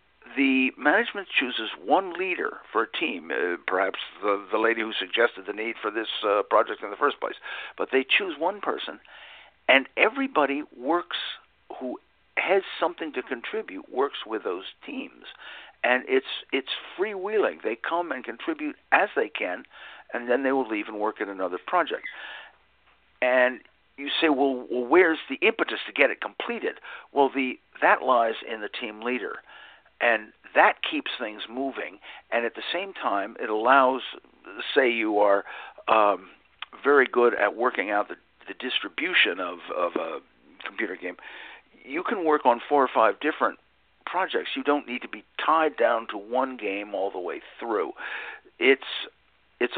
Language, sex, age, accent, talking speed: English, male, 60-79, American, 165 wpm